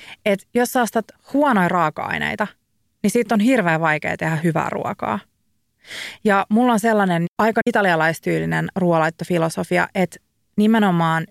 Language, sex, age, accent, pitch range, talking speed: Finnish, female, 30-49, native, 165-215 Hz, 115 wpm